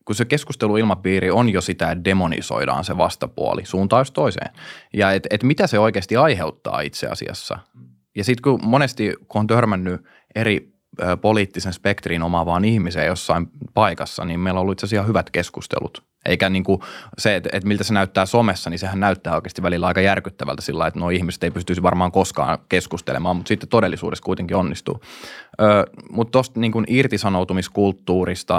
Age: 20-39